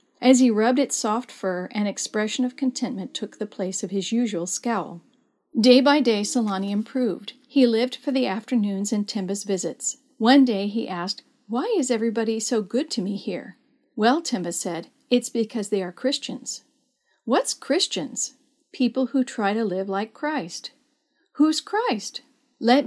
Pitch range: 205-265 Hz